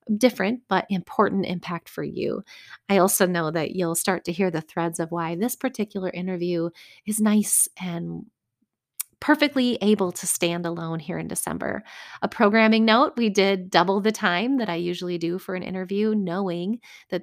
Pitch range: 180-215 Hz